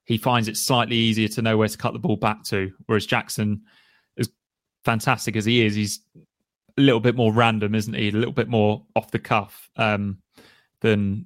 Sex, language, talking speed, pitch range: male, English, 205 wpm, 110-130 Hz